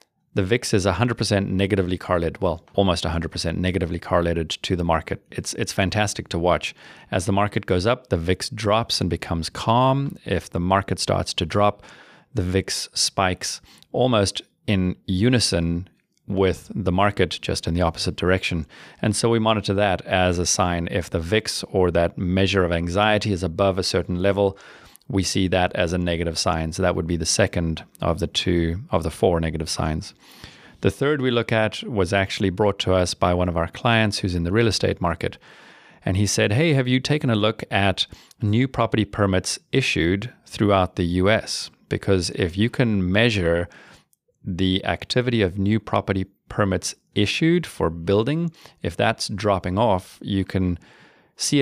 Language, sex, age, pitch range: English, male, 30-49, 90-110 Hz